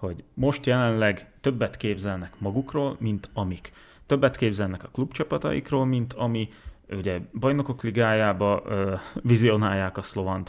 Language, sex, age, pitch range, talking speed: Hungarian, male, 30-49, 95-115 Hz, 120 wpm